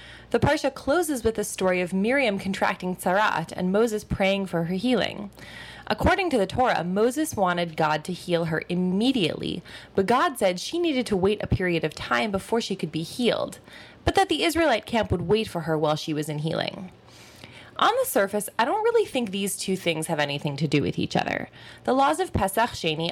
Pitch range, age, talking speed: 170-235 Hz, 20-39, 205 wpm